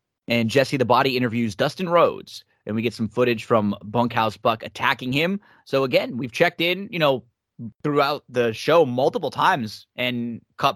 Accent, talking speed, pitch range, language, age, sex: American, 175 wpm, 110-140 Hz, English, 20-39, male